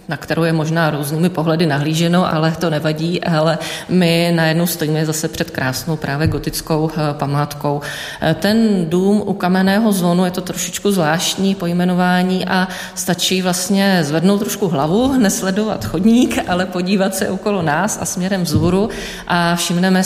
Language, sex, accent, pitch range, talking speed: Czech, female, native, 150-175 Hz, 145 wpm